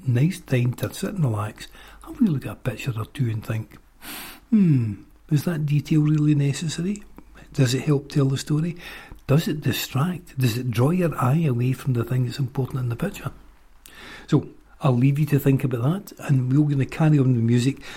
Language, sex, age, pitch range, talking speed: English, male, 60-79, 115-150 Hz, 205 wpm